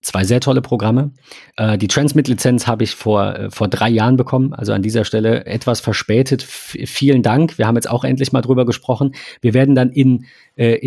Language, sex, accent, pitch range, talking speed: German, male, German, 110-135 Hz, 205 wpm